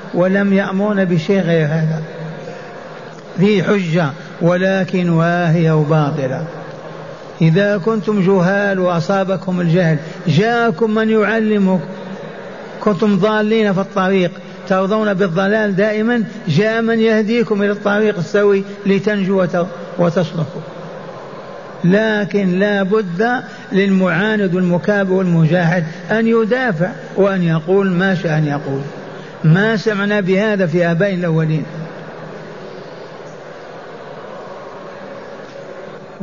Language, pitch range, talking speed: Arabic, 175-205 Hz, 85 wpm